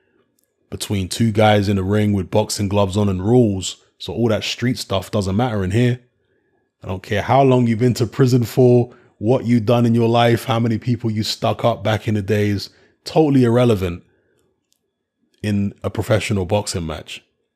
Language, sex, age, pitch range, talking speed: English, male, 20-39, 100-120 Hz, 185 wpm